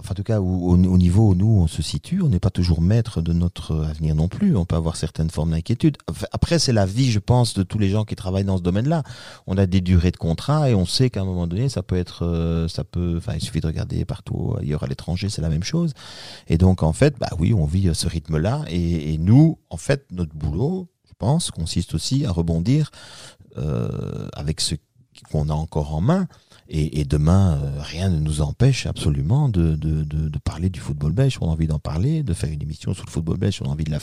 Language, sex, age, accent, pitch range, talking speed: French, male, 40-59, French, 80-110 Hz, 245 wpm